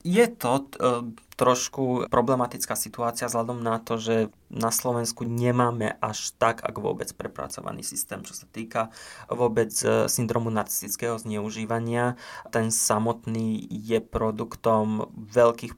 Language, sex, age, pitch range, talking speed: Slovak, male, 20-39, 110-120 Hz, 120 wpm